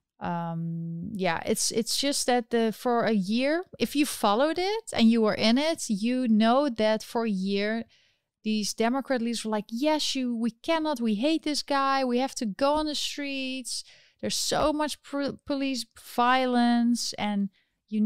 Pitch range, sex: 200-250 Hz, female